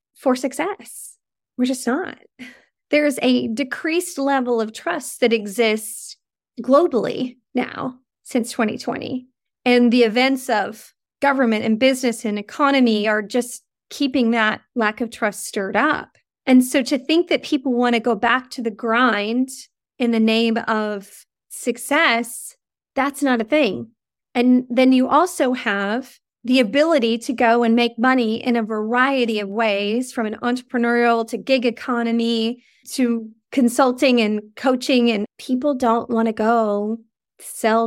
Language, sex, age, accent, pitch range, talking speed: English, female, 30-49, American, 225-270 Hz, 145 wpm